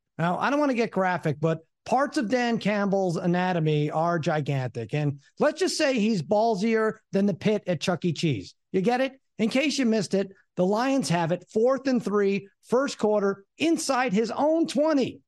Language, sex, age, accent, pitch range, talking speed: English, male, 50-69, American, 175-250 Hz, 195 wpm